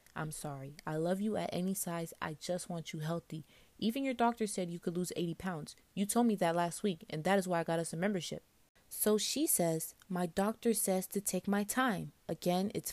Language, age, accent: English, 20-39, American